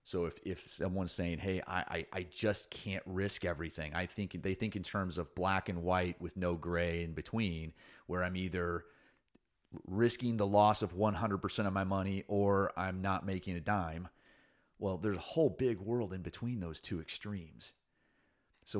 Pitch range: 85-105 Hz